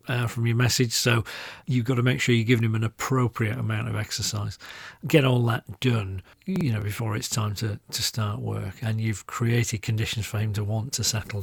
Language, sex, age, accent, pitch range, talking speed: English, male, 40-59, British, 110-135 Hz, 215 wpm